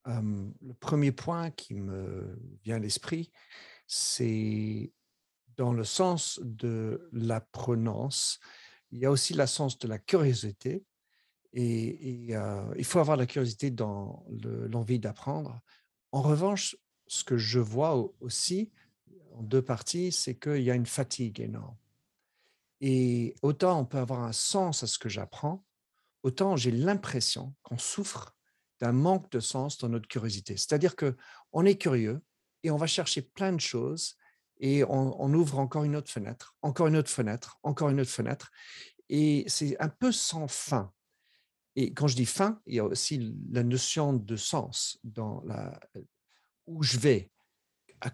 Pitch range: 115-150 Hz